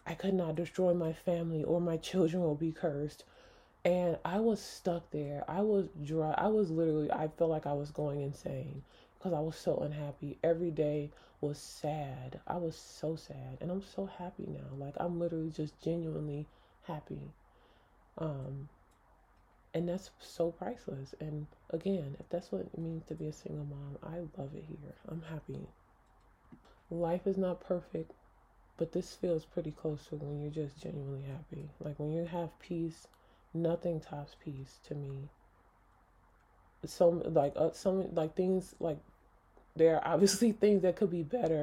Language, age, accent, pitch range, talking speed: English, 20-39, American, 145-175 Hz, 170 wpm